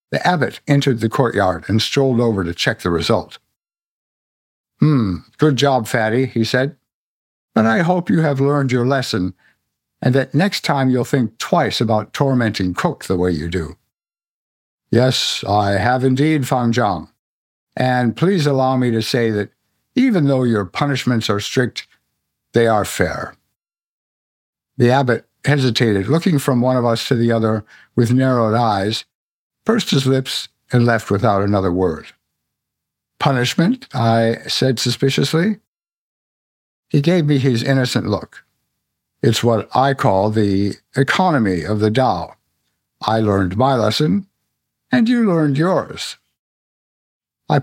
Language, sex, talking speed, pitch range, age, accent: English, male, 140 wpm, 110-145 Hz, 60-79, American